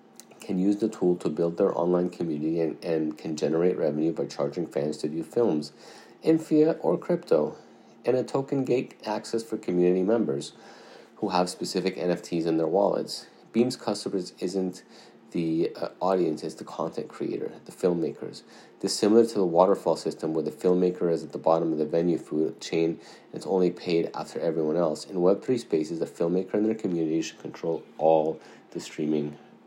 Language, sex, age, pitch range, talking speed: English, male, 30-49, 80-95 Hz, 180 wpm